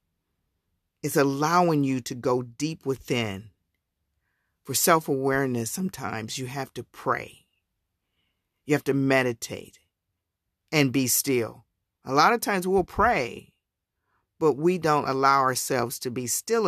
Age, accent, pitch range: 50-69, American, 115-140 Hz